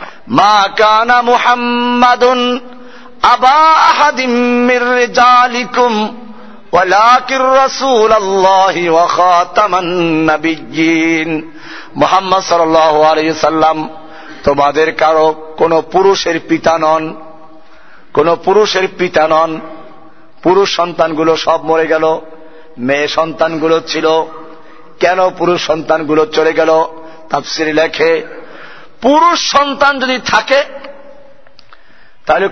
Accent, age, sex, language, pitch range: native, 50-69, male, Bengali, 160-245 Hz